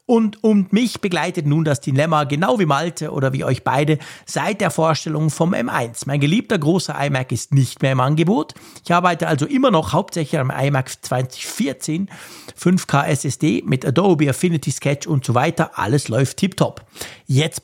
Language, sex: German, male